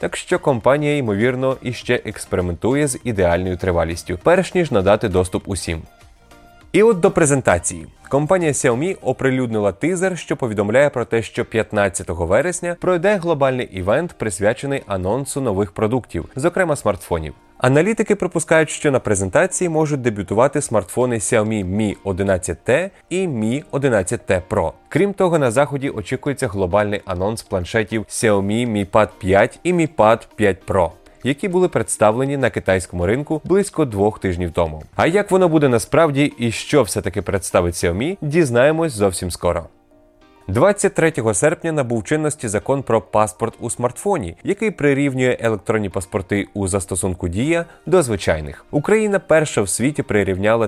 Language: Ukrainian